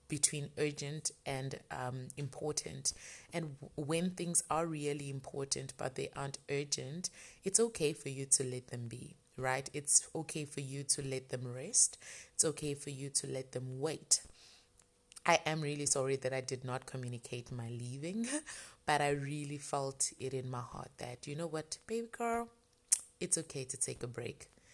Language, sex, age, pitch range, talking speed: English, female, 20-39, 130-150 Hz, 170 wpm